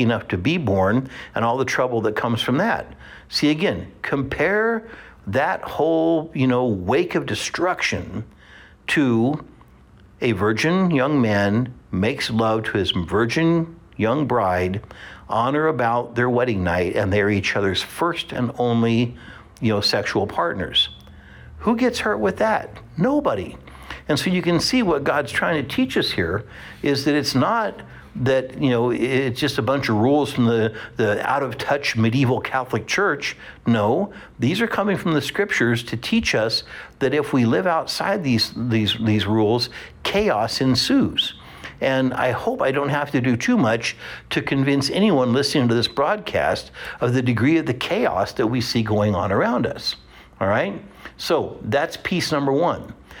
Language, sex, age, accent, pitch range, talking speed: English, male, 60-79, American, 110-145 Hz, 165 wpm